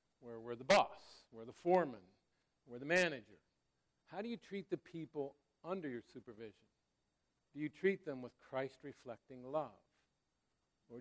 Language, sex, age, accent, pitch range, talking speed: English, male, 60-79, American, 125-170 Hz, 140 wpm